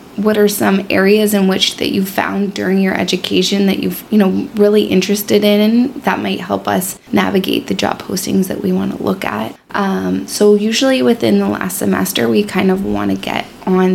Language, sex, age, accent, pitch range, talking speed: English, female, 20-39, American, 175-205 Hz, 200 wpm